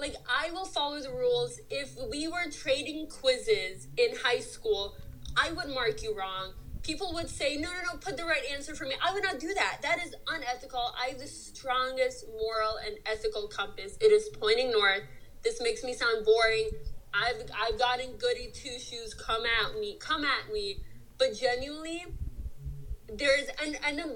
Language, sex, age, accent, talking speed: English, female, 20-39, American, 180 wpm